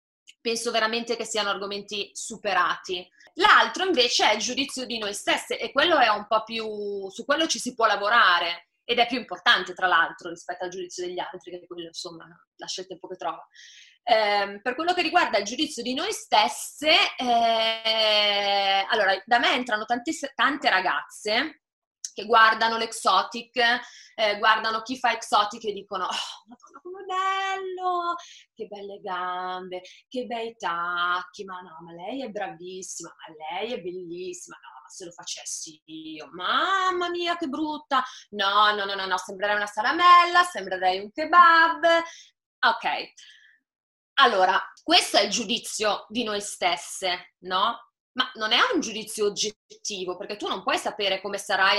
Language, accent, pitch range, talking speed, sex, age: Italian, native, 190-285 Hz, 160 wpm, female, 20-39